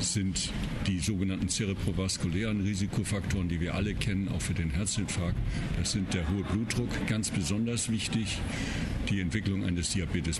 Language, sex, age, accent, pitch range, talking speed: German, male, 60-79, German, 90-110 Hz, 145 wpm